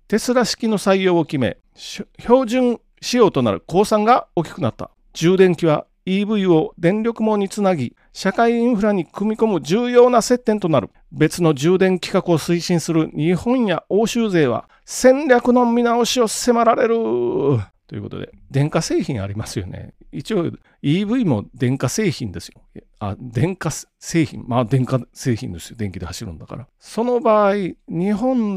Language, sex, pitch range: Japanese, male, 115-190 Hz